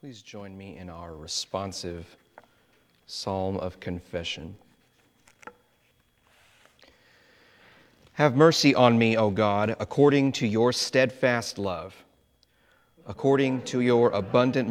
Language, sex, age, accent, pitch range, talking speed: English, male, 40-59, American, 100-135 Hz, 100 wpm